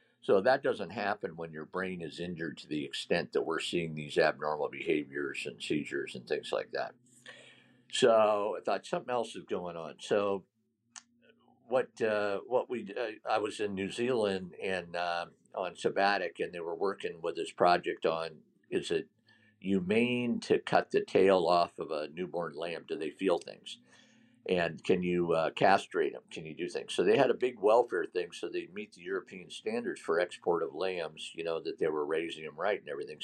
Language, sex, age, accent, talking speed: English, male, 50-69, American, 195 wpm